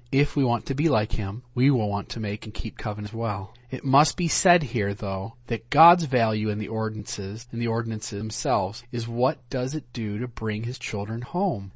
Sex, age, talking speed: male, 40-59, 220 wpm